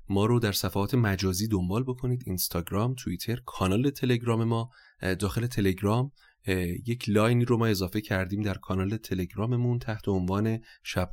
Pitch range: 95-115 Hz